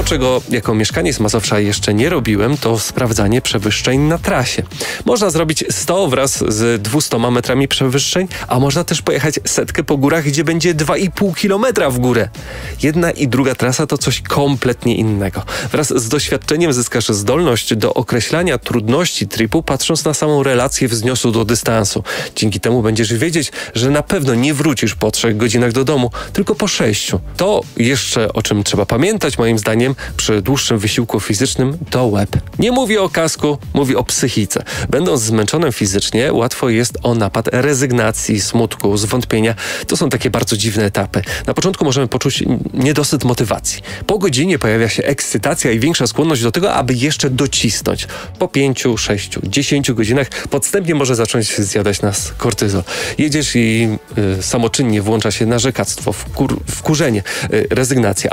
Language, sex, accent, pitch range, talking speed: Polish, male, native, 110-145 Hz, 155 wpm